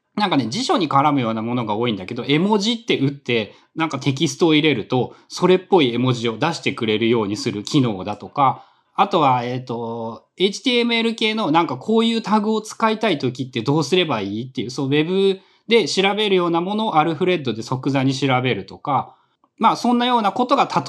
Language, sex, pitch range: Japanese, male, 125-190 Hz